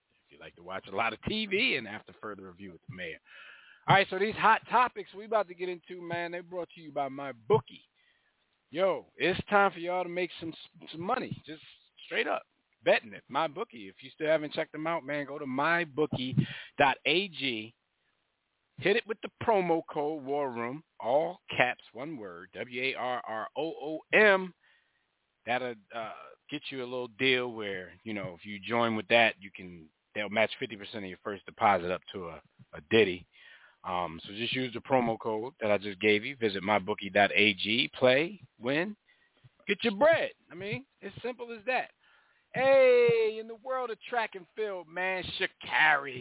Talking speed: 180 wpm